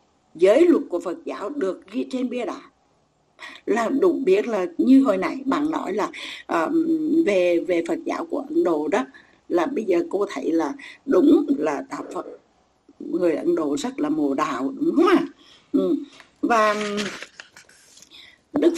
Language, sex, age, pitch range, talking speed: Vietnamese, female, 60-79, 245-335 Hz, 160 wpm